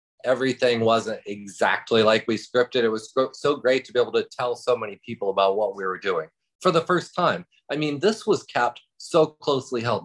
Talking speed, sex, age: 210 wpm, male, 30-49